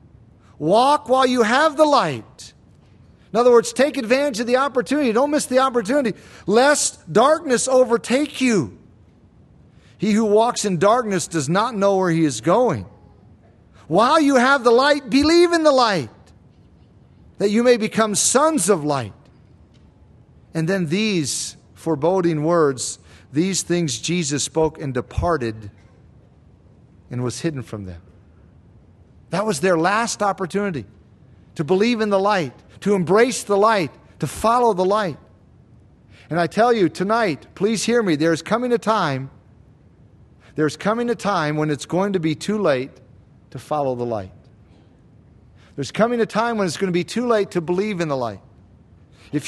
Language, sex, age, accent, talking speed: English, male, 40-59, American, 160 wpm